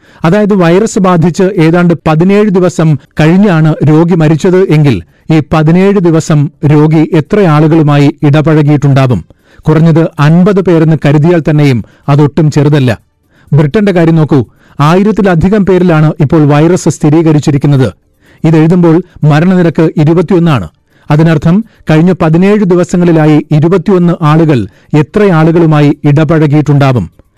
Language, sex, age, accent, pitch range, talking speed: Malayalam, male, 40-59, native, 150-175 Hz, 90 wpm